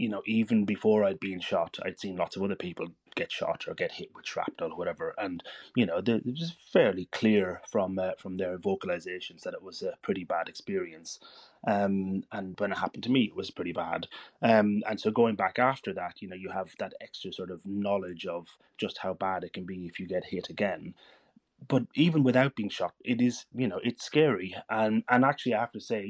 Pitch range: 90-125 Hz